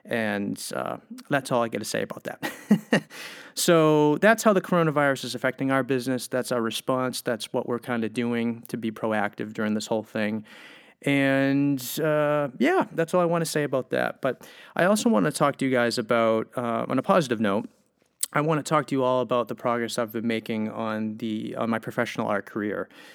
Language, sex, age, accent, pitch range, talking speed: English, male, 30-49, American, 115-140 Hz, 205 wpm